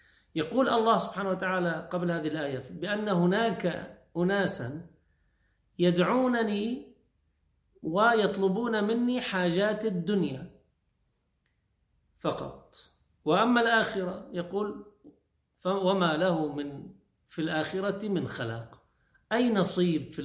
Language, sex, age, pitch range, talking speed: Arabic, male, 50-69, 145-200 Hz, 85 wpm